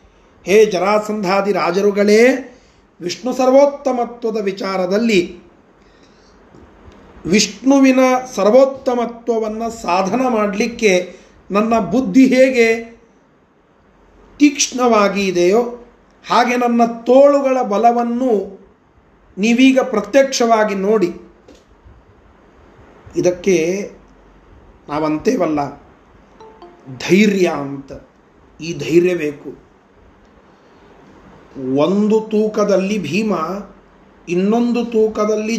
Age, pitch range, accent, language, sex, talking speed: 40-59, 195-255 Hz, native, Kannada, male, 55 wpm